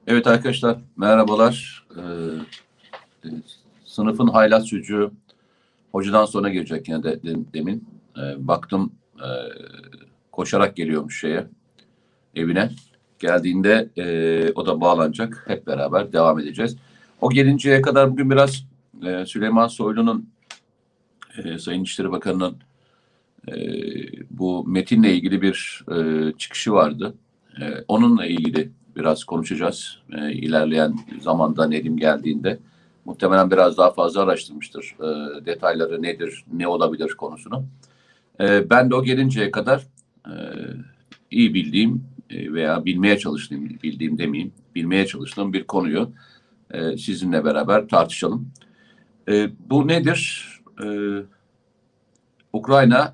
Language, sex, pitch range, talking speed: Turkish, male, 85-125 Hz, 105 wpm